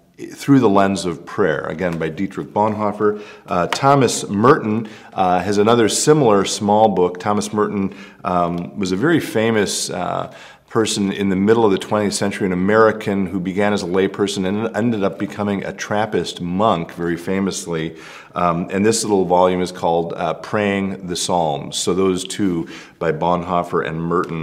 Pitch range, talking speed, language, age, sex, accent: 90-110 Hz, 170 wpm, English, 40-59, male, American